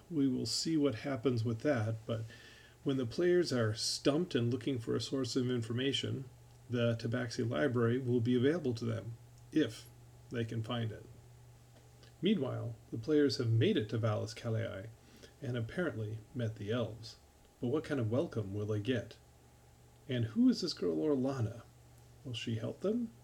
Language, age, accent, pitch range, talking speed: English, 40-59, American, 110-130 Hz, 170 wpm